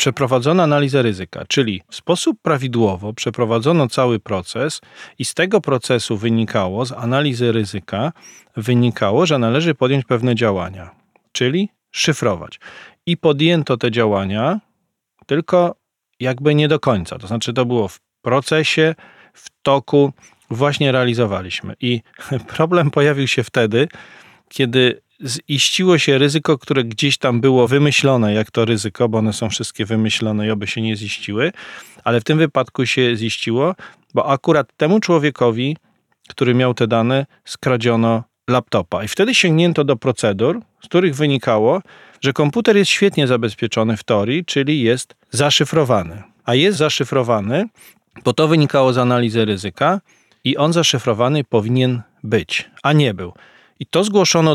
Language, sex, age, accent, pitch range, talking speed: Polish, male, 40-59, native, 115-150 Hz, 140 wpm